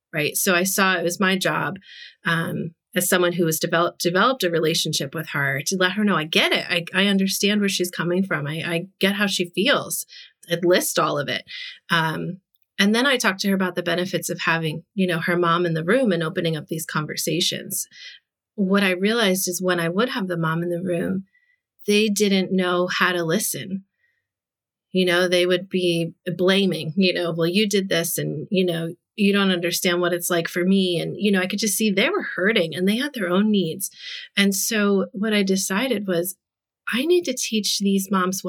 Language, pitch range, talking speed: English, 170-200 Hz, 215 wpm